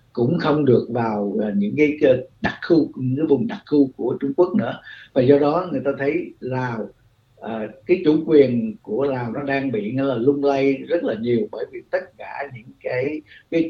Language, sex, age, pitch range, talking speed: Vietnamese, male, 60-79, 125-155 Hz, 215 wpm